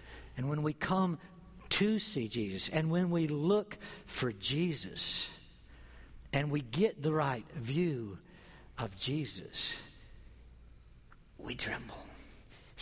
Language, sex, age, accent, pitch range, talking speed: English, male, 60-79, American, 125-175 Hz, 110 wpm